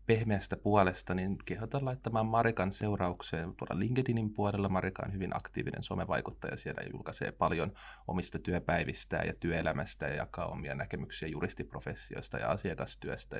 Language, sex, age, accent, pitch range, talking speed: Finnish, male, 20-39, native, 90-110 Hz, 130 wpm